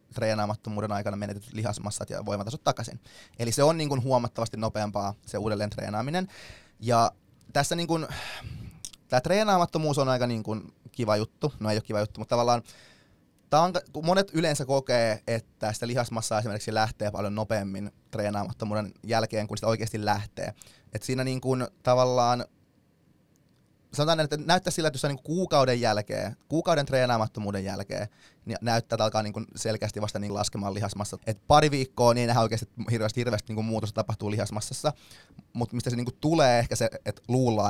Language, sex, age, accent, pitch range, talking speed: Finnish, male, 20-39, native, 105-130 Hz, 155 wpm